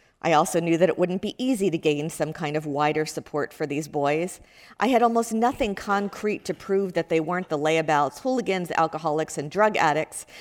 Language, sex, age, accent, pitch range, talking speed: English, female, 50-69, American, 155-195 Hz, 200 wpm